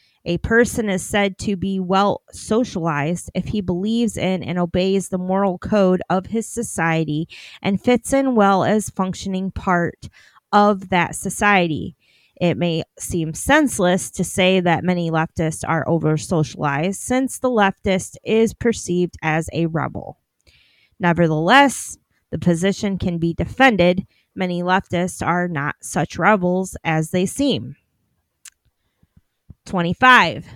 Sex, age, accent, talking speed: female, 20-39, American, 130 wpm